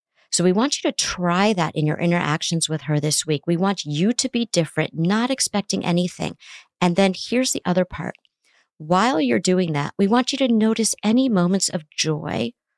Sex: female